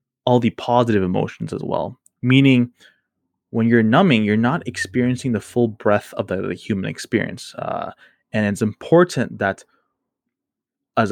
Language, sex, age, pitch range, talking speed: English, male, 20-39, 105-125 Hz, 145 wpm